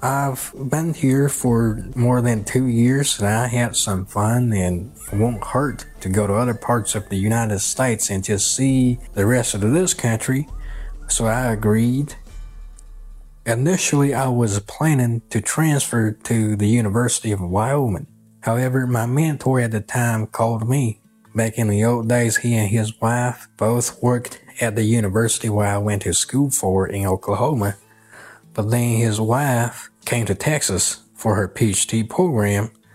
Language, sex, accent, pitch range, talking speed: English, male, American, 110-130 Hz, 160 wpm